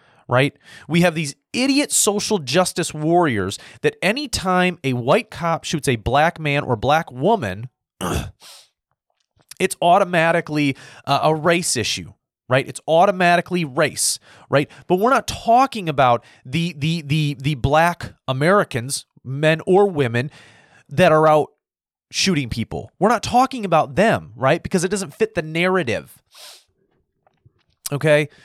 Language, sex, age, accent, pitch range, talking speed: English, male, 30-49, American, 130-180 Hz, 135 wpm